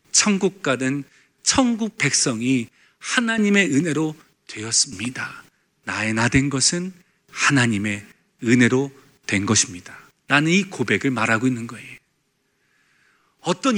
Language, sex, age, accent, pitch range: Korean, male, 40-59, native, 130-215 Hz